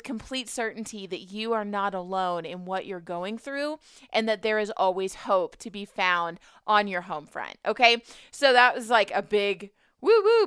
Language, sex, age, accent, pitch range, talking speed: English, female, 20-39, American, 185-230 Hz, 190 wpm